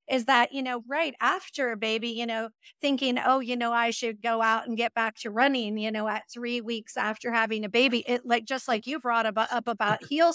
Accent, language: American, English